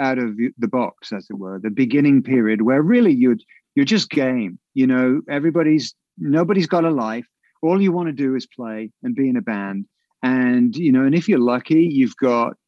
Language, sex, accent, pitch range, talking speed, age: English, male, British, 125-190 Hz, 210 wpm, 50-69